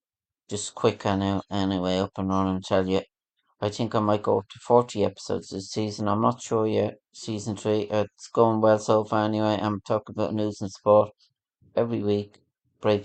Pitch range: 100-110 Hz